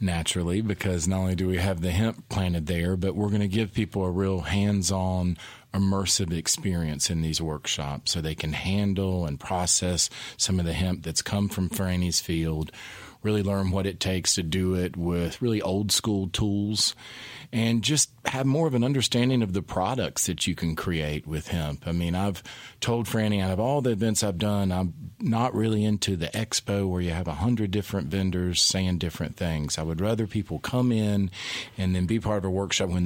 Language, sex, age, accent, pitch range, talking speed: English, male, 40-59, American, 90-110 Hz, 205 wpm